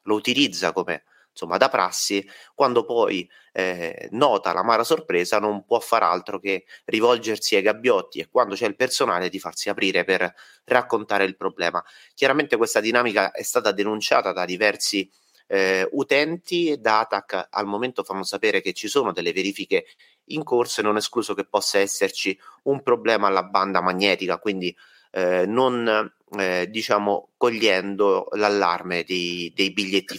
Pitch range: 95-125 Hz